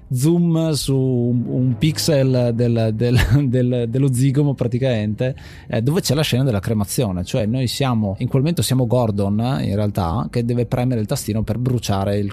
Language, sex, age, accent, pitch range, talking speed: Italian, male, 20-39, native, 110-125 Hz, 170 wpm